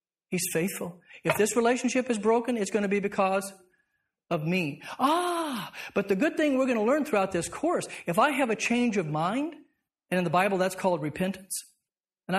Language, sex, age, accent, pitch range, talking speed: English, male, 50-69, American, 175-250 Hz, 200 wpm